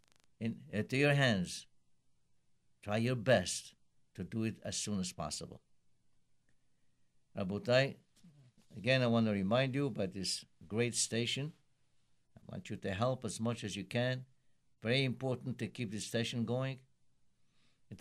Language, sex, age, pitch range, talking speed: English, male, 60-79, 105-140 Hz, 135 wpm